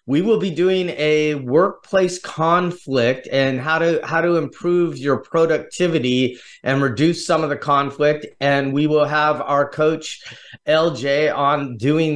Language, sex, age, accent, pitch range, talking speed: English, male, 30-49, American, 140-165 Hz, 150 wpm